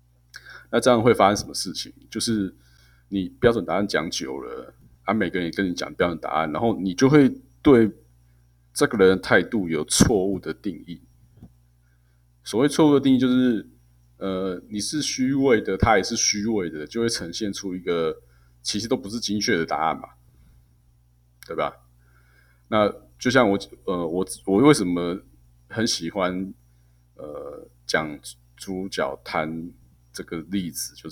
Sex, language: male, Chinese